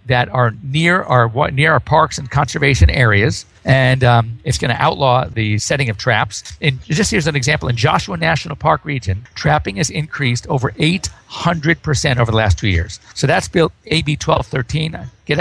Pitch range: 120-155 Hz